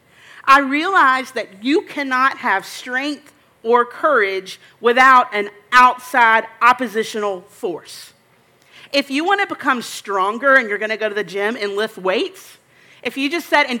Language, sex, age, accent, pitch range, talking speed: English, female, 40-59, American, 230-290 Hz, 155 wpm